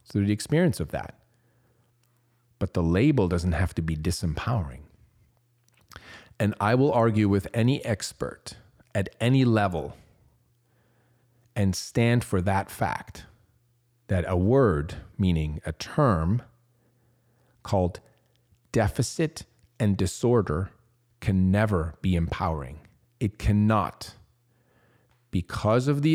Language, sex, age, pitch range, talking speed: English, male, 40-59, 95-120 Hz, 110 wpm